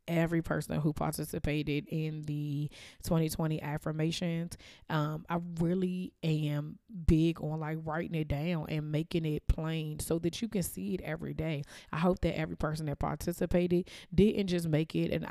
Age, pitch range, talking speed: 20-39, 145-165 Hz, 165 wpm